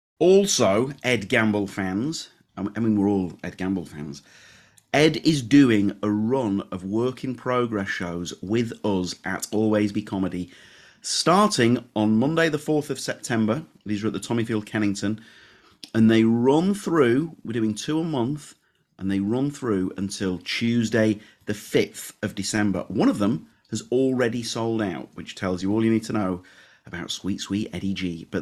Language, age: English, 30-49